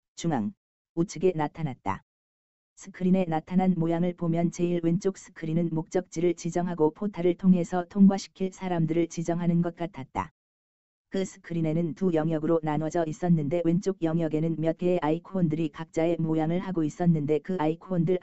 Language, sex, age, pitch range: Korean, female, 20-39, 155-180 Hz